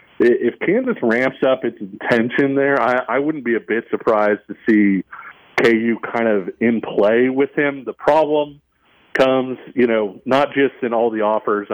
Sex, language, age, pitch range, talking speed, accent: male, English, 40-59, 105-135 Hz, 175 wpm, American